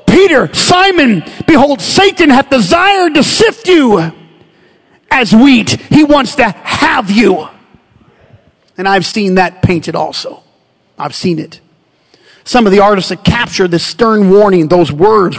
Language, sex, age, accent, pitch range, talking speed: English, male, 40-59, American, 200-285 Hz, 140 wpm